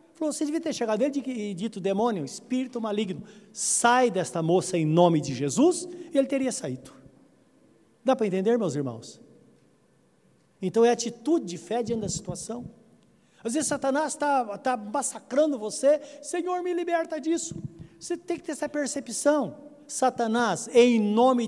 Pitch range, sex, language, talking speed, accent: 190-275 Hz, male, Portuguese, 150 wpm, Brazilian